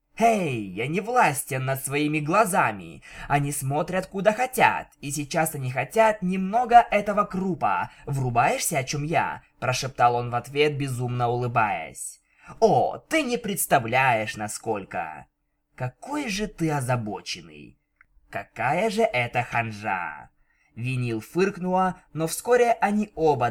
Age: 20-39